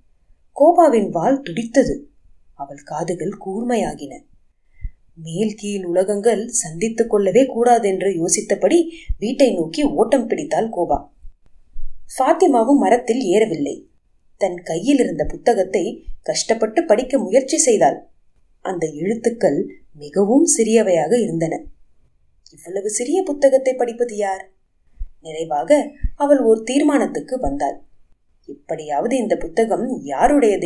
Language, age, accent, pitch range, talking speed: Tamil, 30-49, native, 175-280 Hz, 90 wpm